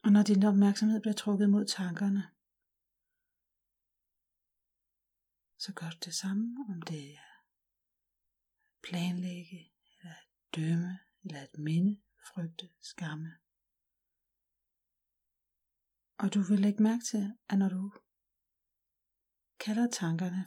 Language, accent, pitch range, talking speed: Danish, native, 165-205 Hz, 105 wpm